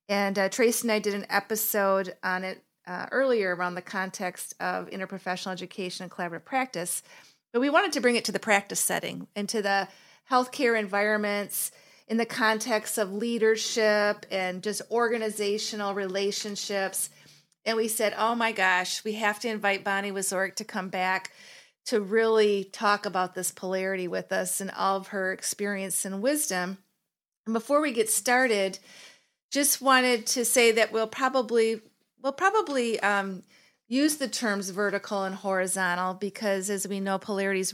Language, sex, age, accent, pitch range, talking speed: English, female, 40-59, American, 190-225 Hz, 160 wpm